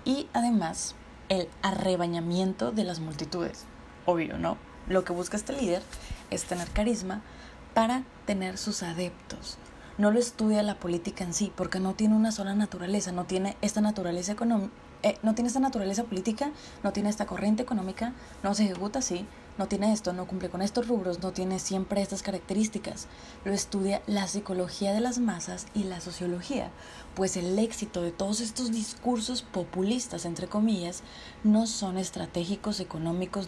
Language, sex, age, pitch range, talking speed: Spanish, female, 20-39, 185-225 Hz, 165 wpm